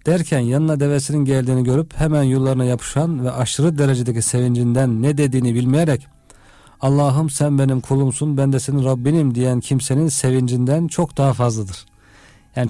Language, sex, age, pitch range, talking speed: Turkish, male, 50-69, 125-140 Hz, 140 wpm